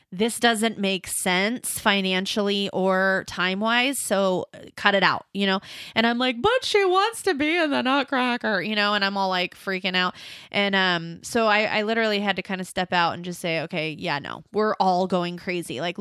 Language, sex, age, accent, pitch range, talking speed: English, female, 20-39, American, 180-220 Hz, 205 wpm